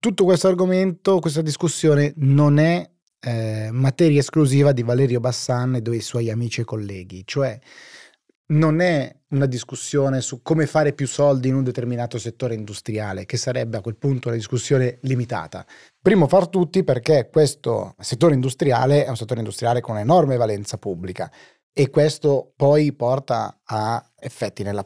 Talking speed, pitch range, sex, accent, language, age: 155 wpm, 115-145 Hz, male, native, Italian, 30-49